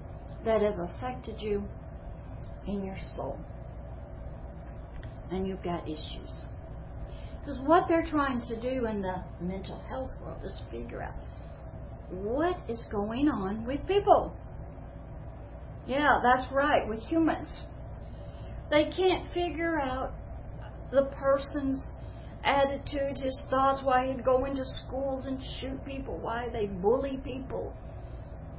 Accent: American